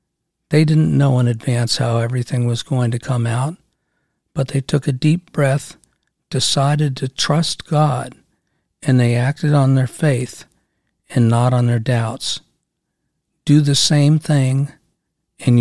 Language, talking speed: English, 145 wpm